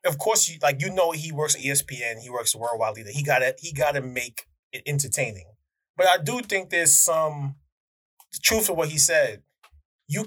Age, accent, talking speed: 20-39, American, 205 wpm